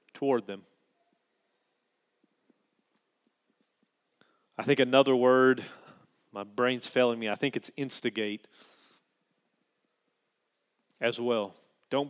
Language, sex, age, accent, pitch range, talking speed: English, male, 30-49, American, 125-155 Hz, 85 wpm